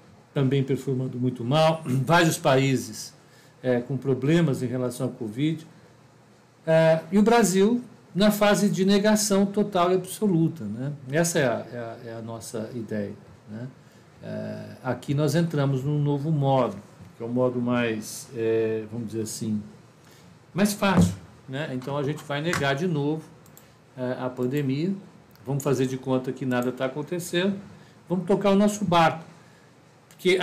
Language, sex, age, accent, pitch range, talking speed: Portuguese, male, 60-79, Brazilian, 125-170 Hz, 140 wpm